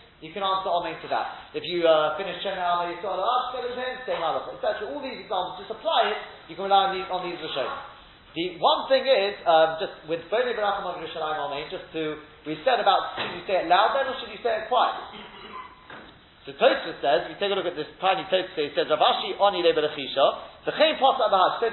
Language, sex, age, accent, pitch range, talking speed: English, male, 30-49, British, 175-245 Hz, 230 wpm